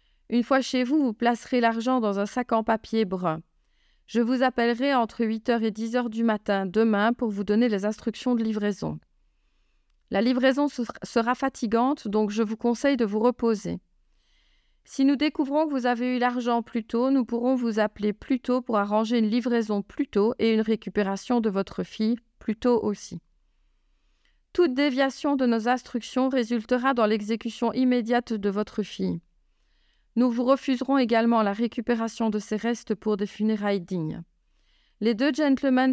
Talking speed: 165 wpm